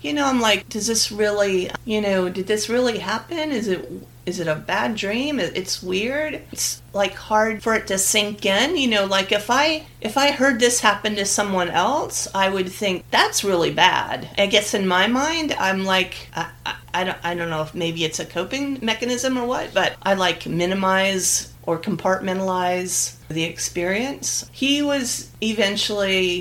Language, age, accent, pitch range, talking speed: English, 40-59, American, 160-215 Hz, 185 wpm